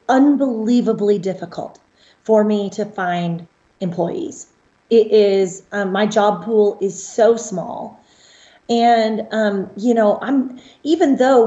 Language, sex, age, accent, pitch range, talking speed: English, female, 30-49, American, 190-235 Hz, 120 wpm